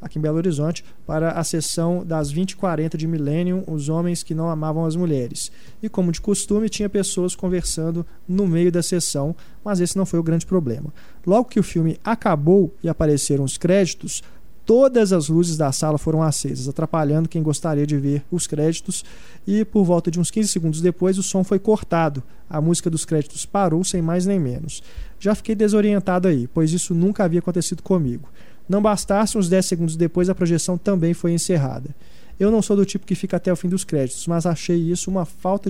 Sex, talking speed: male, 200 wpm